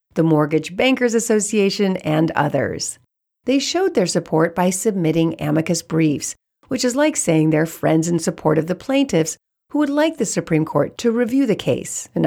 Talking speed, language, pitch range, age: 175 wpm, English, 160-230 Hz, 50-69